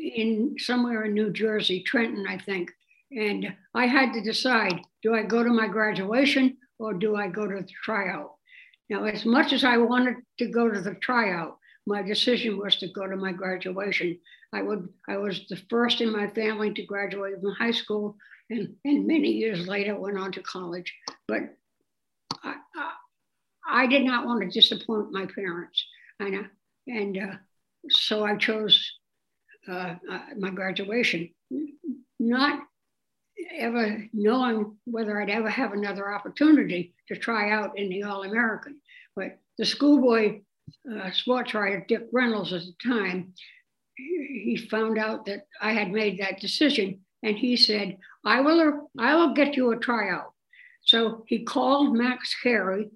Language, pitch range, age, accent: English, 200-250 Hz, 60-79, American